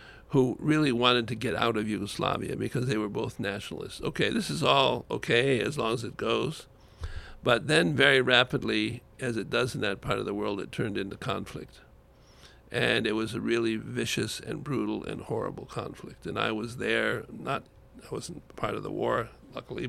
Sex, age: male, 60-79